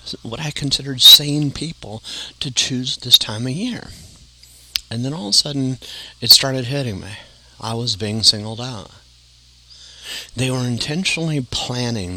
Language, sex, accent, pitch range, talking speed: English, male, American, 90-115 Hz, 150 wpm